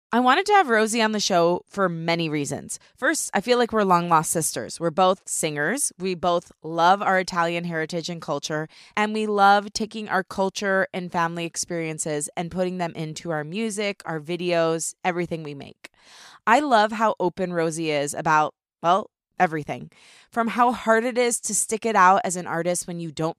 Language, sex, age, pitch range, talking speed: English, female, 20-39, 160-200 Hz, 190 wpm